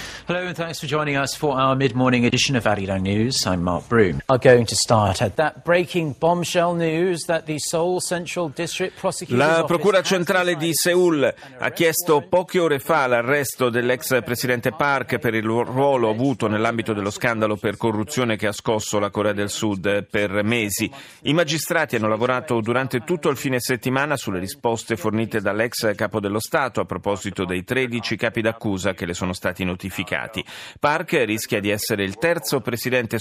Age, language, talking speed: 40-59, Italian, 120 wpm